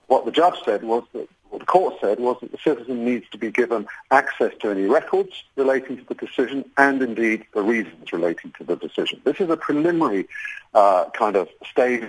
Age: 50-69